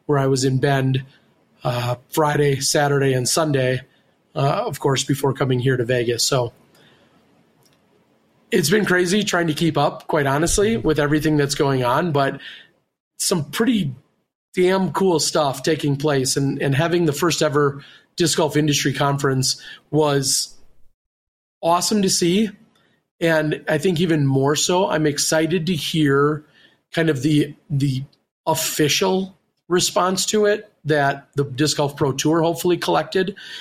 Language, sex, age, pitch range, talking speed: English, male, 30-49, 135-160 Hz, 145 wpm